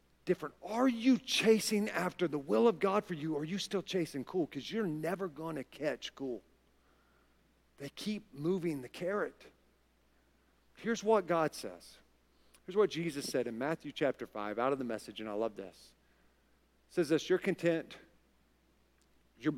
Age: 40-59